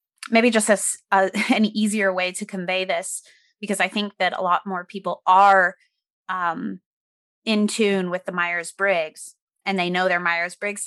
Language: English